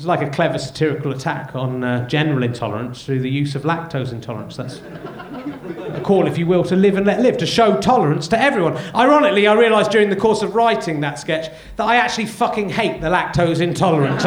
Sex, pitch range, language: male, 185-235 Hz, English